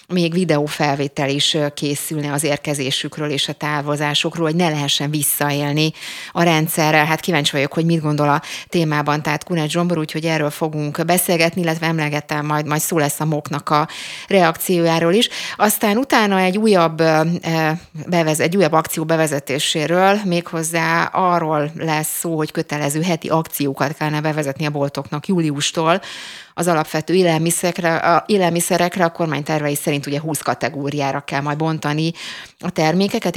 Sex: female